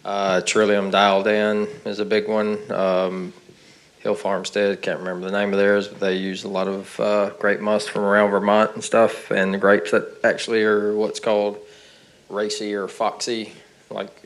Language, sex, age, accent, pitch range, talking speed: English, male, 20-39, American, 100-110 Hz, 180 wpm